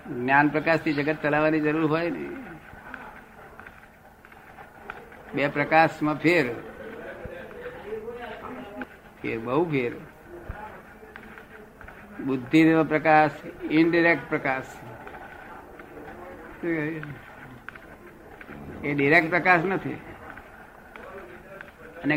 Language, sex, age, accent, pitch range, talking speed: Gujarati, male, 60-79, native, 145-170 Hz, 35 wpm